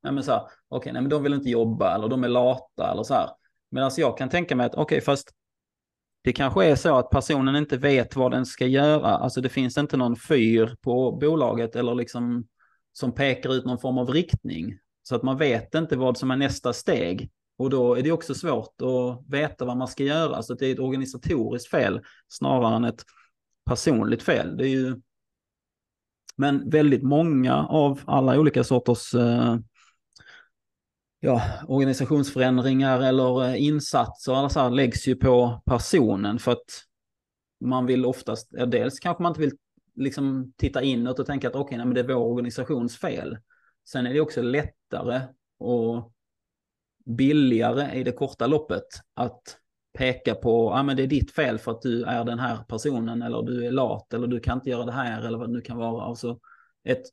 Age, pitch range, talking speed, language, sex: 30-49, 120-135 Hz, 190 wpm, Swedish, male